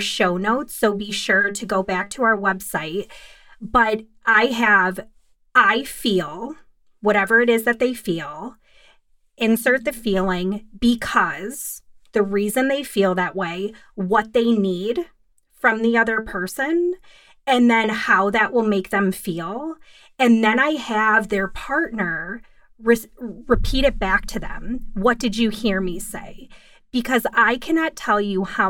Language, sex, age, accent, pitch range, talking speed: English, female, 30-49, American, 200-245 Hz, 145 wpm